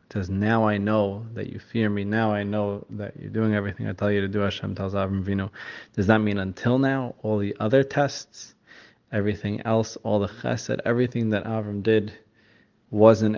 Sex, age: male, 20-39